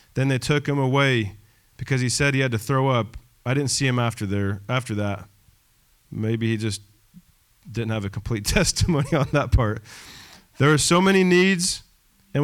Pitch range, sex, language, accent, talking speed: 115-170 Hz, male, English, American, 185 wpm